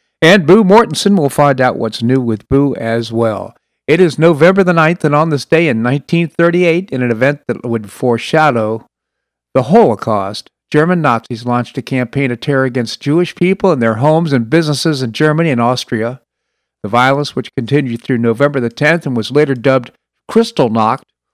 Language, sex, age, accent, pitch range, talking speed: English, male, 50-69, American, 120-155 Hz, 175 wpm